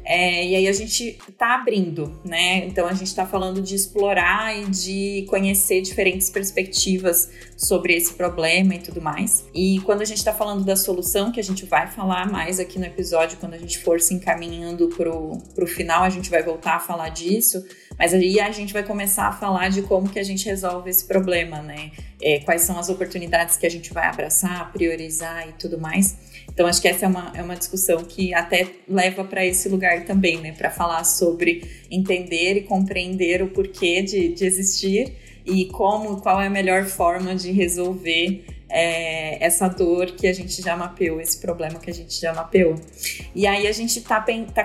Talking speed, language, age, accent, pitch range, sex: 190 wpm, Portuguese, 30-49, Brazilian, 175-195 Hz, female